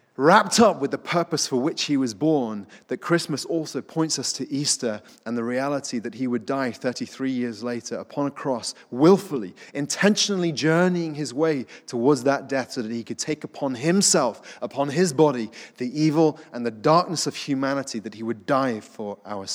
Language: English